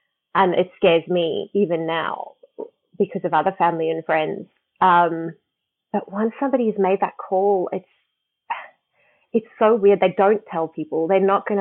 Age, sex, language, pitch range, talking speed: 30-49, female, English, 175-210 Hz, 160 wpm